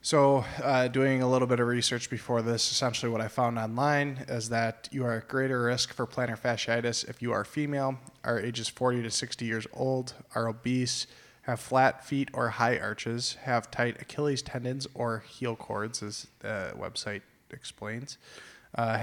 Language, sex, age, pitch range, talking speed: English, male, 20-39, 115-130 Hz, 175 wpm